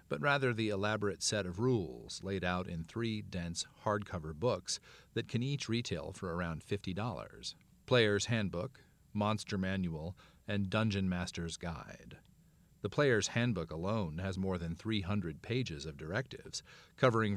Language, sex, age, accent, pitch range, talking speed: English, male, 40-59, American, 90-110 Hz, 140 wpm